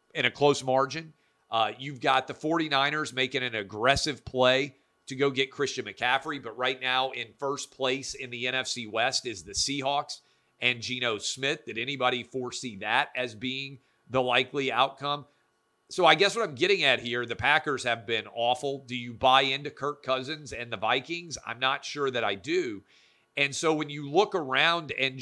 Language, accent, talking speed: English, American, 185 wpm